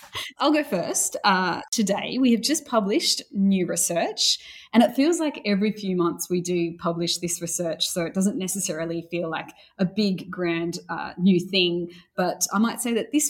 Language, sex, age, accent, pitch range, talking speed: English, female, 20-39, Australian, 175-210 Hz, 185 wpm